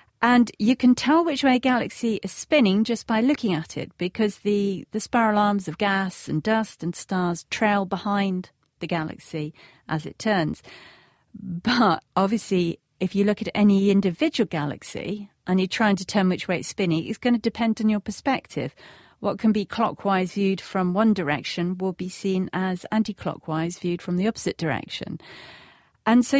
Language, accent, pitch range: English, British, 180-230 Hz